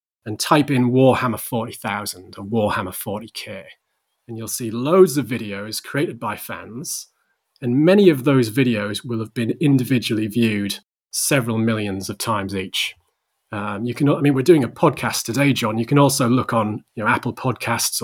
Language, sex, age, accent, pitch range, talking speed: English, male, 30-49, British, 105-130 Hz, 175 wpm